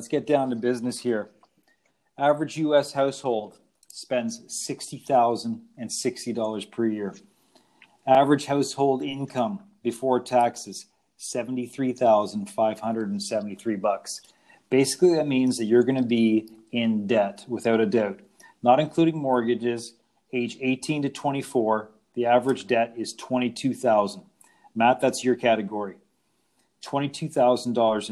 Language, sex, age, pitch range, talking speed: English, male, 40-59, 115-140 Hz, 105 wpm